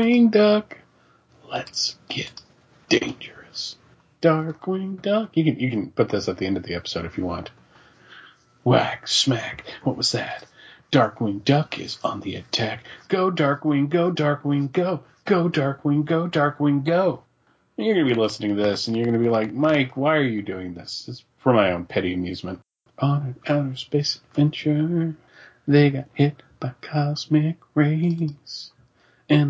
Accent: American